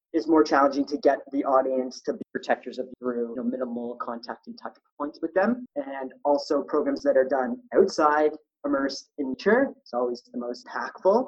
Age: 30-49